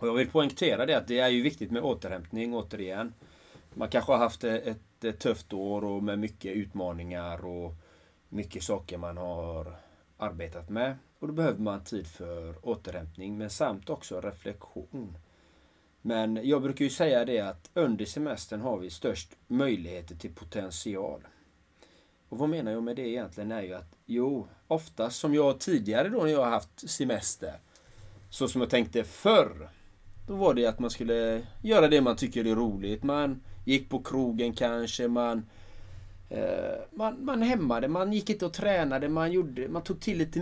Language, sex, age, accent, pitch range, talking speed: Swedish, male, 30-49, native, 95-125 Hz, 170 wpm